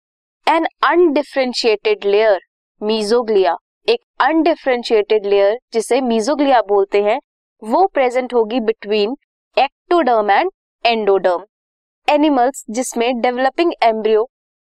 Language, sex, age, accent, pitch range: Hindi, female, 20-39, native, 210-300 Hz